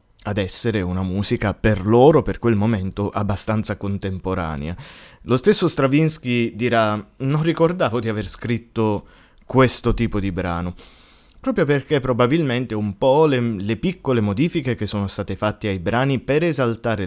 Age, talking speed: 20-39, 145 wpm